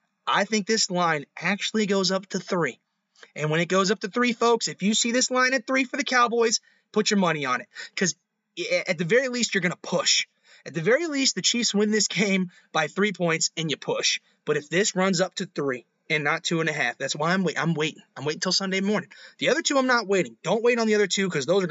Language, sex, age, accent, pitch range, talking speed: English, male, 20-39, American, 150-215 Hz, 260 wpm